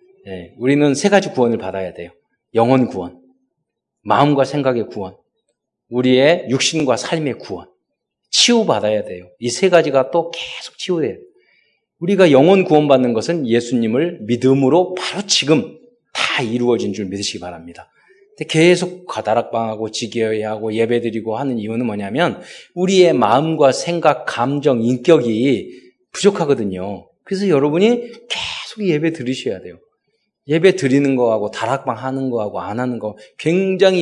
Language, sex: Korean, male